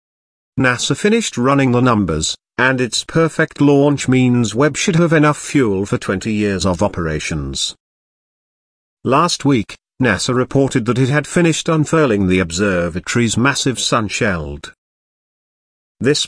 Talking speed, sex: 125 wpm, male